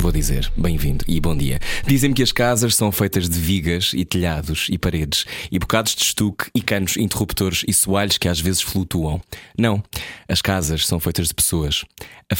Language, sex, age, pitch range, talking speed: Portuguese, male, 20-39, 80-100 Hz, 190 wpm